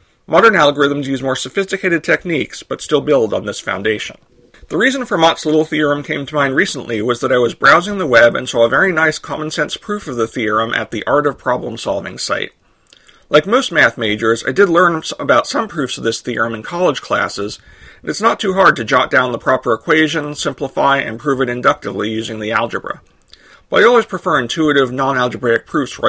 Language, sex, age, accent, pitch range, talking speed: English, male, 40-59, American, 120-160 Hz, 200 wpm